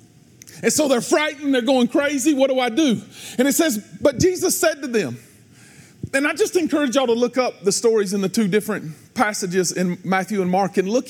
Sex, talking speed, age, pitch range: male, 215 wpm, 40-59, 185-260 Hz